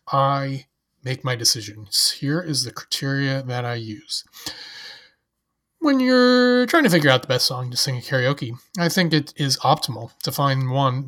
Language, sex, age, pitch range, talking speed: English, male, 30-49, 120-150 Hz, 175 wpm